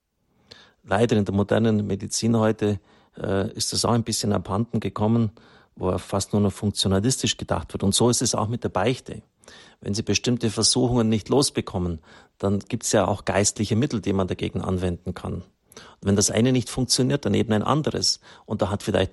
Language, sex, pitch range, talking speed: German, male, 100-120 Hz, 190 wpm